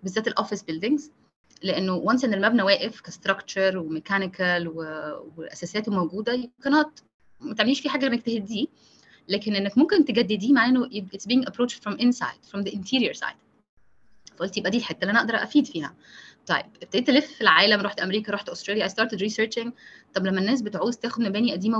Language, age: Arabic, 20-39